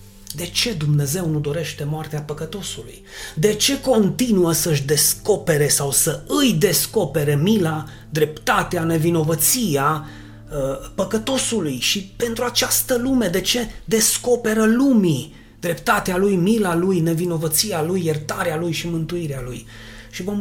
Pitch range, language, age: 140-210 Hz, Romanian, 30-49